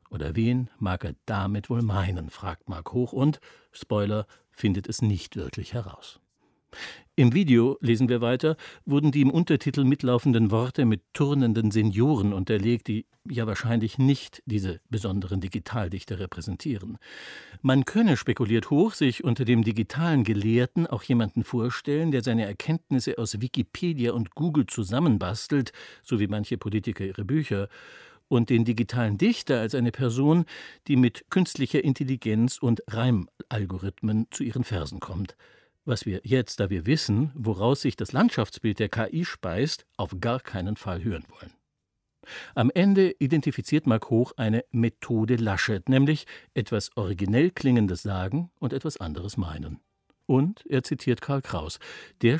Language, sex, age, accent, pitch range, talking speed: German, male, 60-79, German, 105-135 Hz, 145 wpm